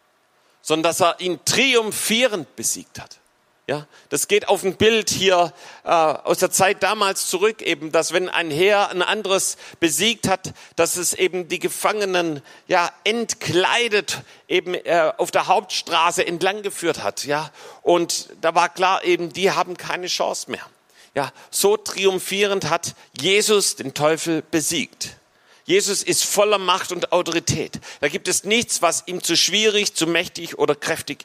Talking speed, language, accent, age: 155 wpm, German, German, 40-59